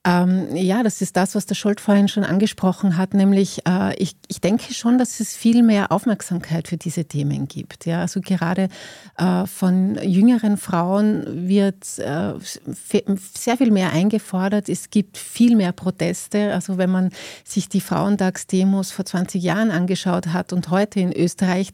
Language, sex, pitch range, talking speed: German, female, 175-200 Hz, 150 wpm